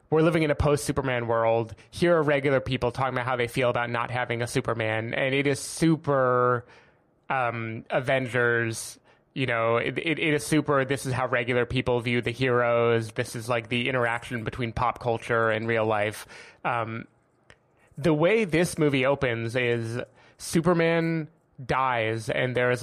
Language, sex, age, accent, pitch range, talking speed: English, male, 20-39, American, 120-150 Hz, 170 wpm